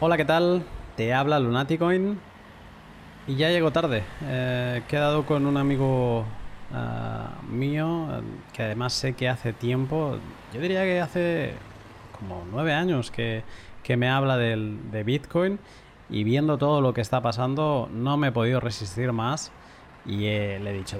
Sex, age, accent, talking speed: male, 20-39, Spanish, 160 wpm